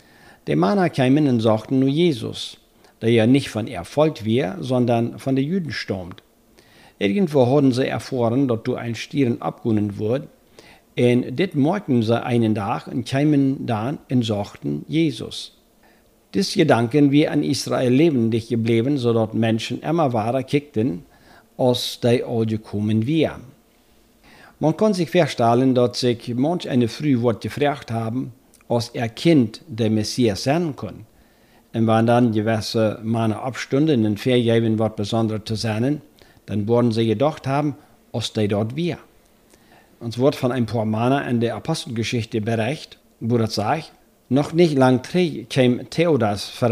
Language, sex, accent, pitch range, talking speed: German, male, German, 115-140 Hz, 150 wpm